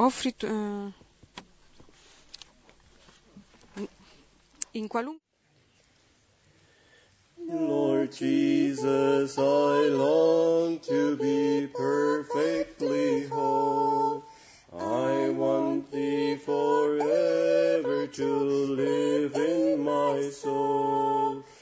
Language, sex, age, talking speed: Italian, male, 40-59, 55 wpm